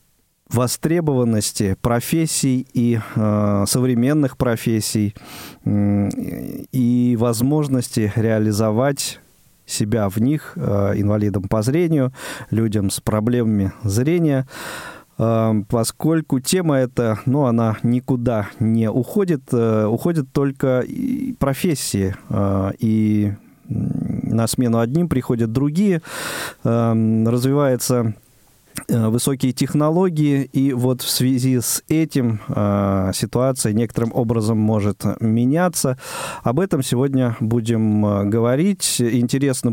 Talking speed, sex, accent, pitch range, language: 95 wpm, male, native, 110-135 Hz, Russian